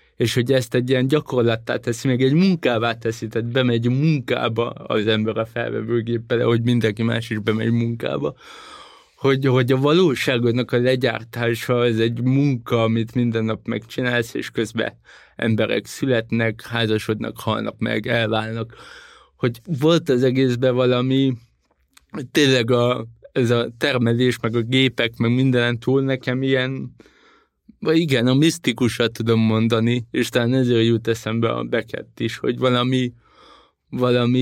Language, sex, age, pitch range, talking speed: Hungarian, male, 20-39, 115-125 Hz, 140 wpm